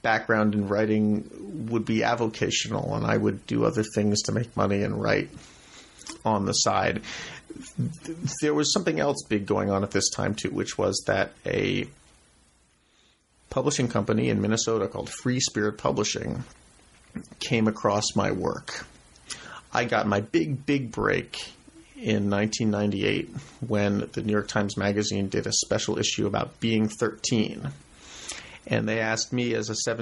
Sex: male